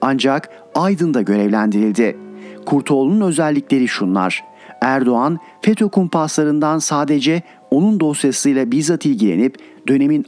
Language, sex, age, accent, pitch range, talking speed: Turkish, male, 40-59, native, 135-185 Hz, 90 wpm